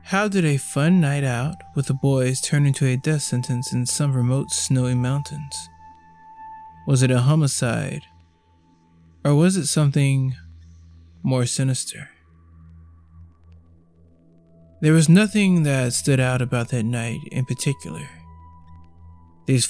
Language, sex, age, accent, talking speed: English, male, 20-39, American, 125 wpm